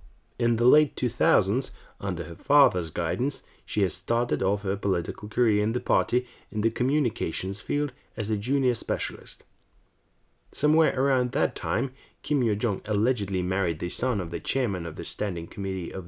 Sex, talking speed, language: male, 165 wpm, English